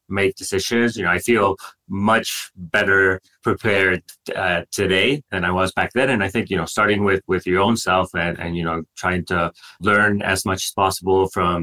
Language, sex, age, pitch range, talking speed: English, male, 30-49, 90-105 Hz, 200 wpm